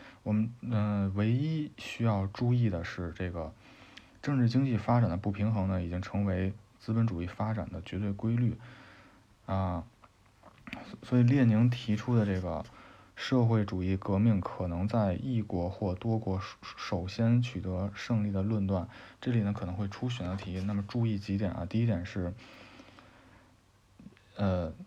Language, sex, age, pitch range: Chinese, male, 20-39, 95-115 Hz